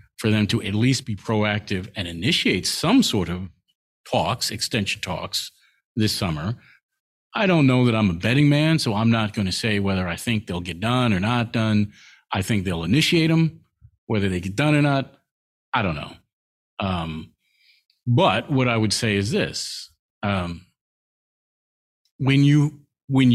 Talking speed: 170 wpm